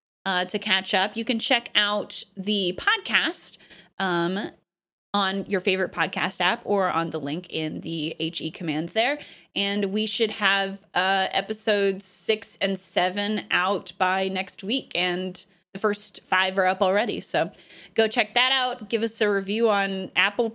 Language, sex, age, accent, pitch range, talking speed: English, female, 20-39, American, 195-260 Hz, 165 wpm